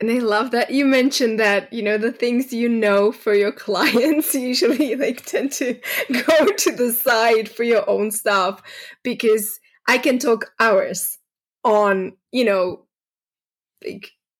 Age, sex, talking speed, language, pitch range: 20-39, female, 155 wpm, English, 205-265 Hz